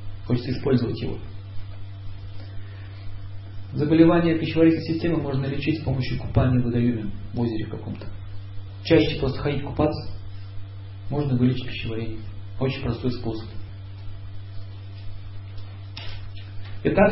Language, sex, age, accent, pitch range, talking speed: Russian, male, 40-59, native, 100-155 Hz, 95 wpm